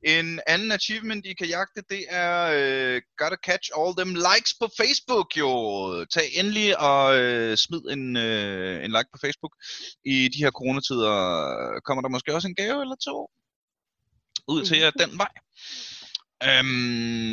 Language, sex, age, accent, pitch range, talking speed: Danish, male, 20-39, native, 95-155 Hz, 165 wpm